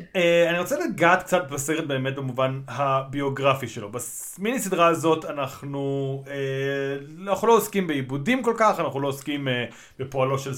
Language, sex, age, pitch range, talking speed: Hebrew, male, 30-49, 140-195 Hz, 155 wpm